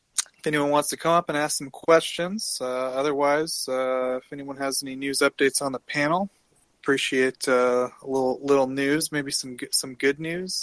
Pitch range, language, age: 110-140 Hz, English, 30-49